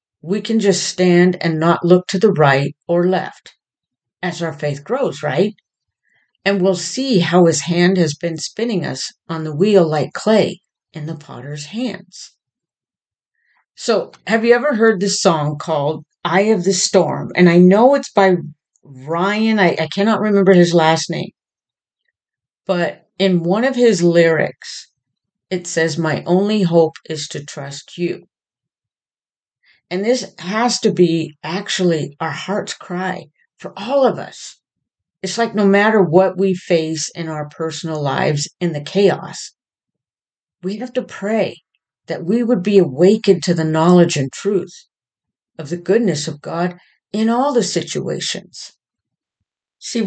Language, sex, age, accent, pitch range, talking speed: English, female, 50-69, American, 160-200 Hz, 150 wpm